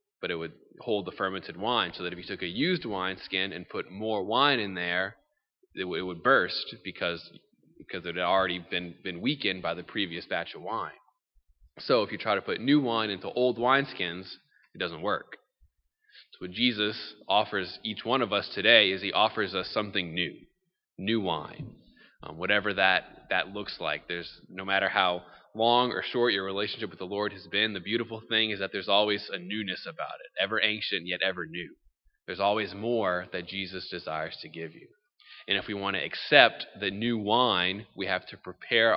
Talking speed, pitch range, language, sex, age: 200 wpm, 95-120 Hz, English, male, 20-39